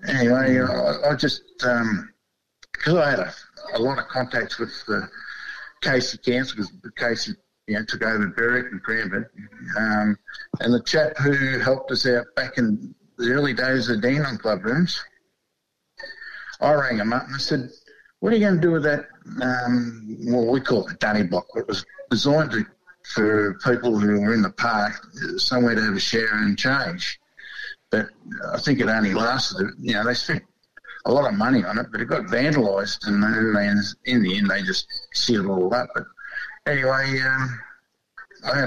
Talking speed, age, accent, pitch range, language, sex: 190 wpm, 50-69, Australian, 120-155 Hz, English, male